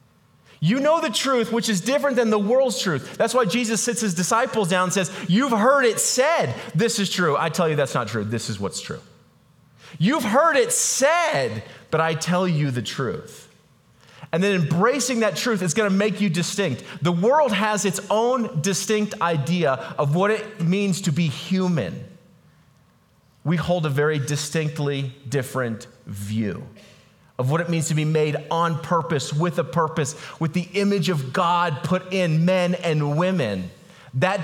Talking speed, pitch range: 175 wpm, 155-210 Hz